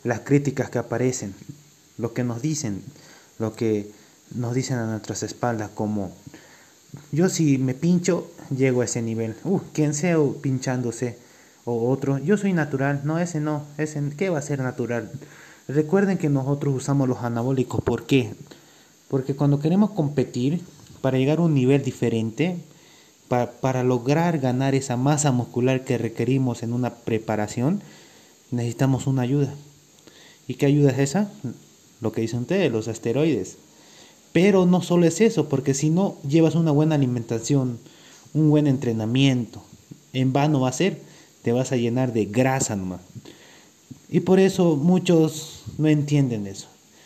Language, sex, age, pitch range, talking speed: Spanish, male, 30-49, 115-150 Hz, 150 wpm